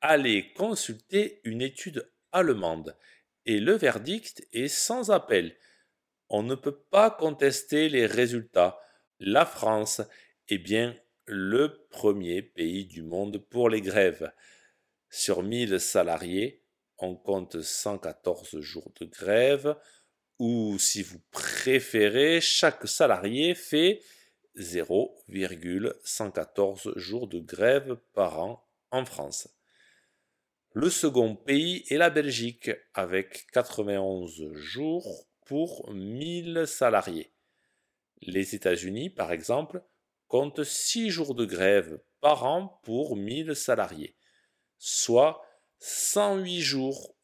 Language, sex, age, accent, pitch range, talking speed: French, male, 50-69, French, 100-150 Hz, 105 wpm